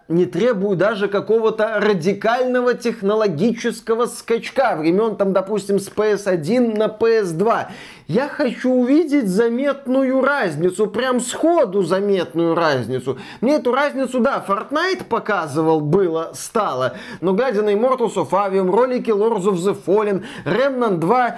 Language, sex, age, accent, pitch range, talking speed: Russian, male, 20-39, native, 190-245 Hz, 125 wpm